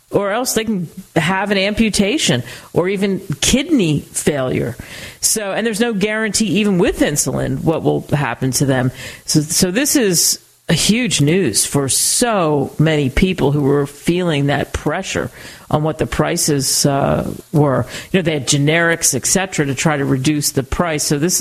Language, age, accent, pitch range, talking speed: English, 50-69, American, 140-175 Hz, 170 wpm